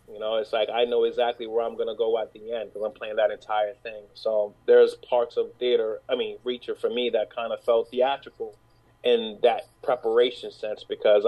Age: 30-49